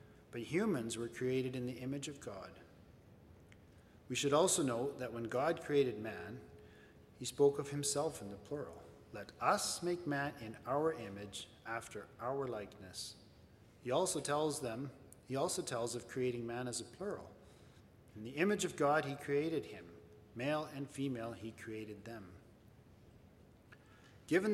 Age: 40-59